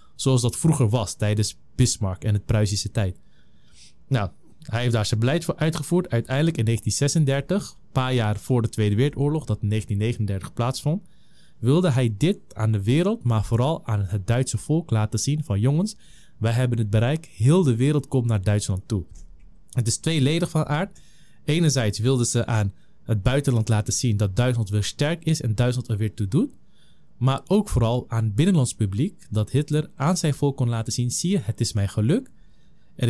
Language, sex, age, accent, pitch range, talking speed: Dutch, male, 20-39, Dutch, 110-140 Hz, 190 wpm